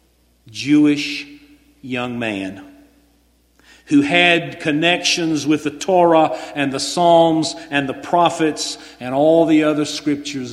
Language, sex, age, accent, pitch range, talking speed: English, male, 50-69, American, 125-175 Hz, 115 wpm